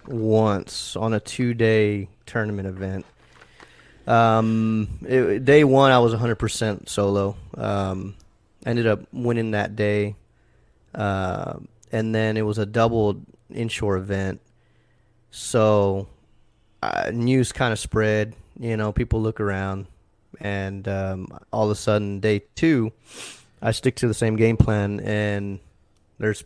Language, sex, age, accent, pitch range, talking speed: English, male, 30-49, American, 100-115 Hz, 125 wpm